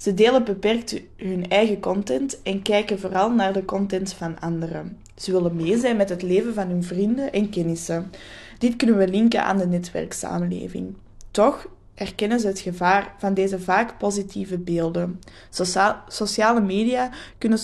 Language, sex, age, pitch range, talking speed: English, female, 20-39, 175-210 Hz, 155 wpm